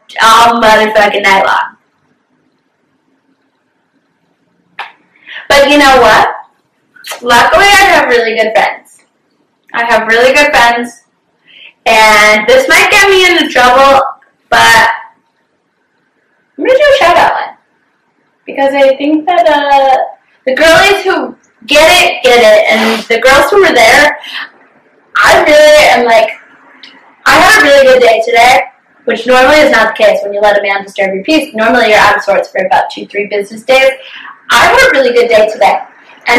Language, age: English, 10-29